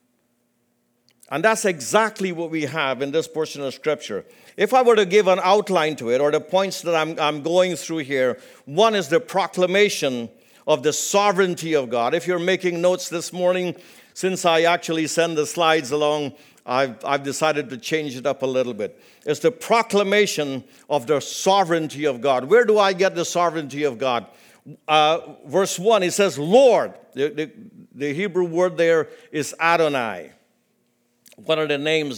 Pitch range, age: 145-190 Hz, 50-69